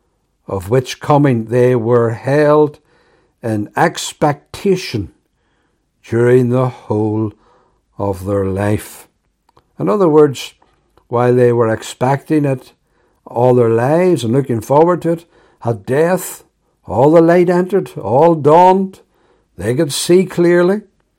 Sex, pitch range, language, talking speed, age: male, 115-160 Hz, English, 120 wpm, 60-79